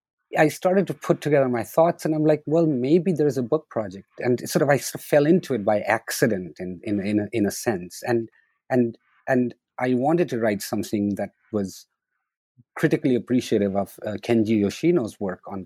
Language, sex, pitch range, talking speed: English, male, 110-155 Hz, 200 wpm